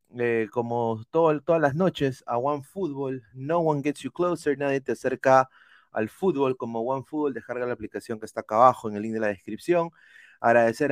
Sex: male